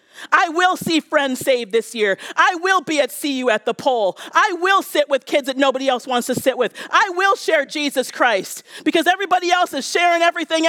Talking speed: 215 wpm